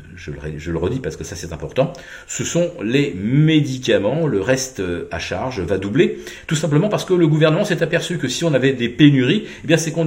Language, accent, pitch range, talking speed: French, French, 95-135 Hz, 215 wpm